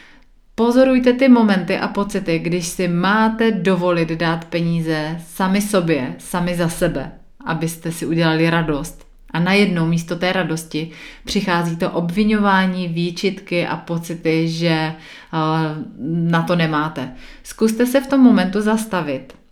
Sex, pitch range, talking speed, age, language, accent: female, 165-205 Hz, 125 wpm, 30-49, Czech, native